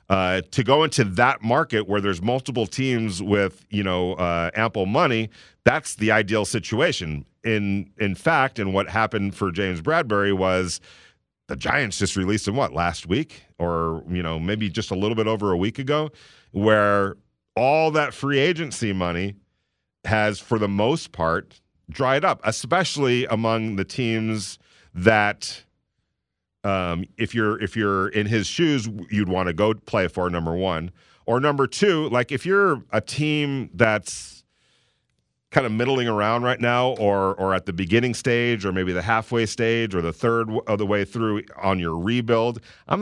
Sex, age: male, 40-59